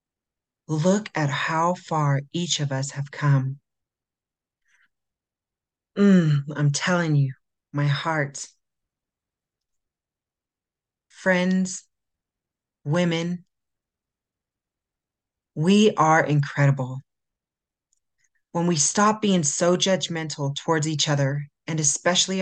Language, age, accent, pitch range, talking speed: English, 40-59, American, 140-180 Hz, 85 wpm